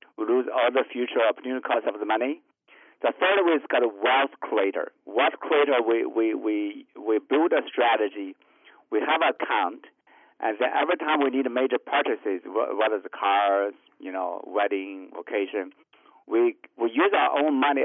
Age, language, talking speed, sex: 50-69, English, 180 wpm, male